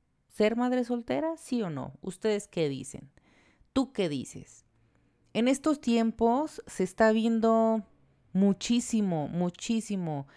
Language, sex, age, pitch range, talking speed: Spanish, female, 30-49, 145-195 Hz, 115 wpm